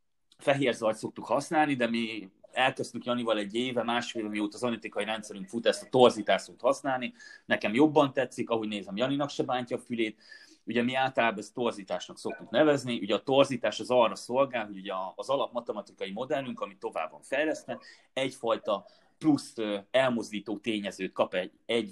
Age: 30-49